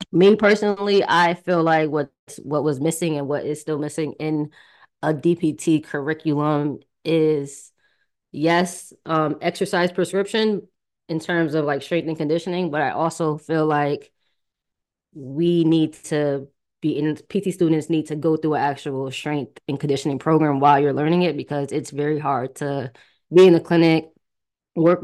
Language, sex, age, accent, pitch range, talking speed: English, female, 20-39, American, 145-165 Hz, 160 wpm